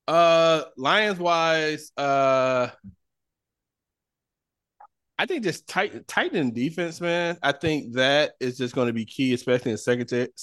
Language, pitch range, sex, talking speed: English, 105-125 Hz, male, 140 wpm